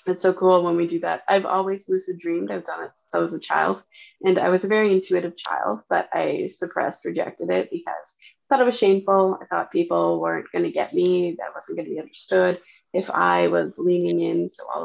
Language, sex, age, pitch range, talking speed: English, female, 20-39, 175-195 Hz, 230 wpm